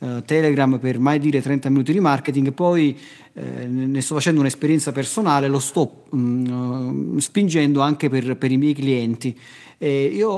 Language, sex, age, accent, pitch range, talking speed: Italian, male, 40-59, native, 135-160 Hz, 145 wpm